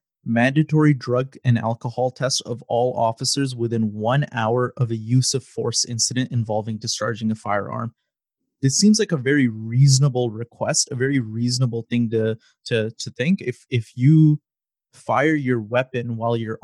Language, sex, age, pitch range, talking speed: English, male, 30-49, 115-135 Hz, 160 wpm